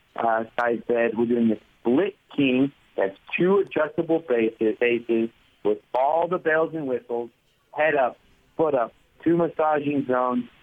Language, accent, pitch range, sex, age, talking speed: English, American, 120-165 Hz, male, 50-69, 145 wpm